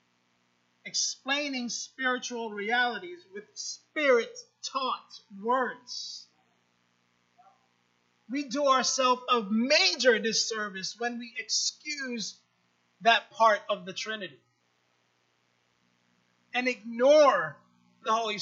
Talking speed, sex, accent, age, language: 80 wpm, male, American, 30-49, English